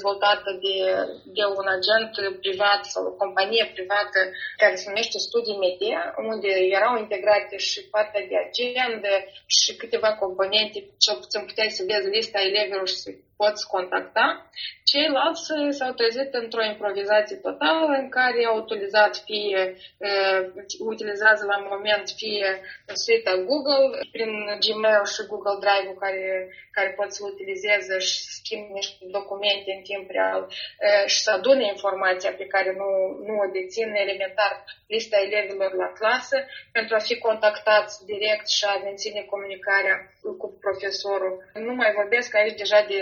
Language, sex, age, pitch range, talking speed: Romanian, female, 20-39, 195-220 Hz, 145 wpm